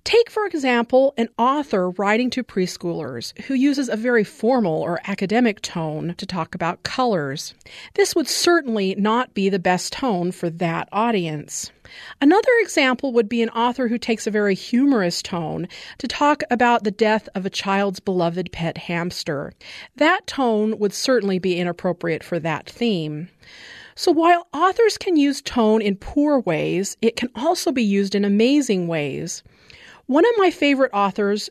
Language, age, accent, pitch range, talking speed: English, 40-59, American, 185-255 Hz, 160 wpm